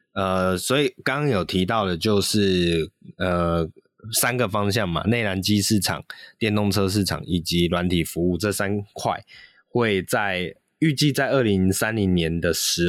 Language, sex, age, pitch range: Chinese, male, 20-39, 90-115 Hz